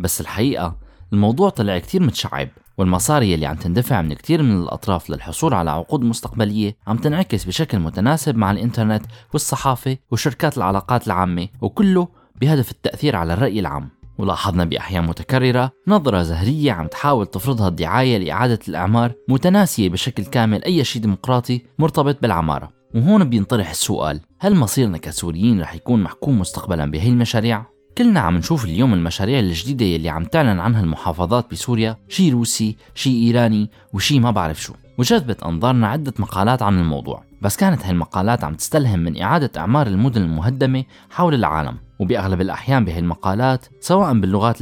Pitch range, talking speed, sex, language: 95-130 Hz, 145 wpm, male, Arabic